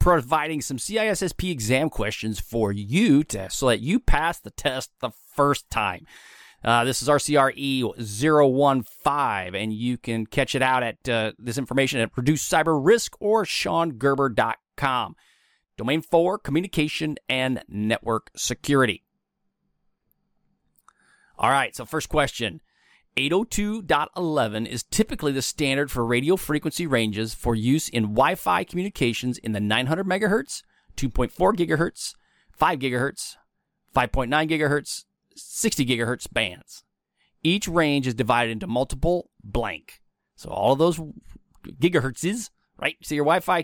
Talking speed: 130 wpm